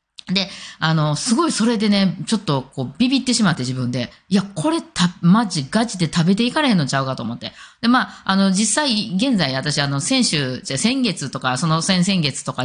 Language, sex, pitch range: Japanese, female, 150-220 Hz